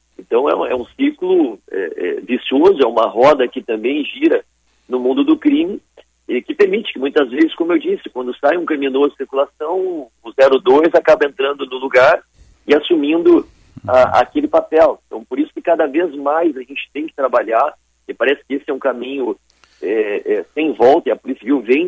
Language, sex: Portuguese, male